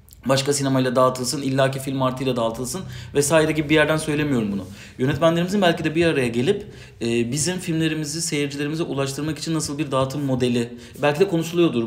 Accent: native